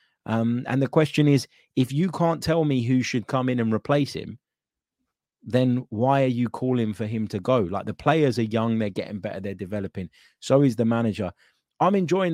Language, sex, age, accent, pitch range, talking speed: English, male, 30-49, British, 105-140 Hz, 205 wpm